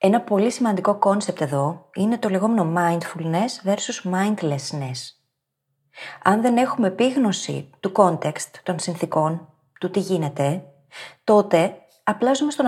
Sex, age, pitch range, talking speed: female, 30-49, 155-220 Hz, 125 wpm